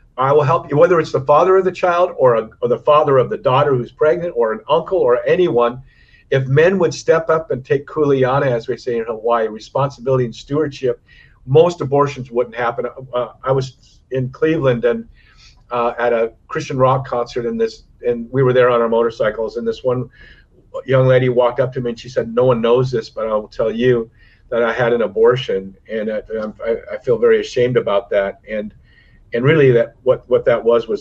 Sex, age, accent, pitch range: male, 50-69, American, 120-180 Hz